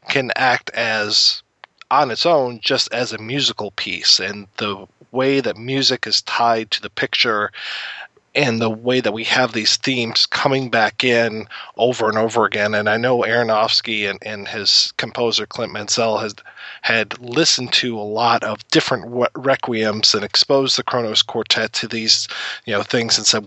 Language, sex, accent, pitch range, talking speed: English, male, American, 115-140 Hz, 170 wpm